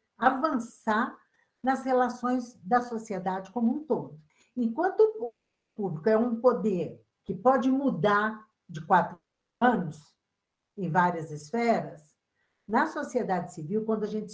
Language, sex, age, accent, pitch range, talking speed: Portuguese, female, 60-79, Brazilian, 190-270 Hz, 120 wpm